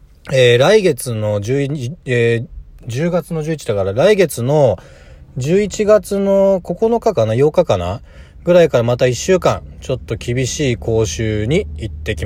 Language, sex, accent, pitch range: Japanese, male, native, 115-175 Hz